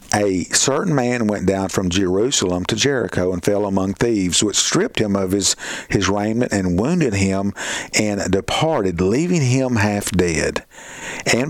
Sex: male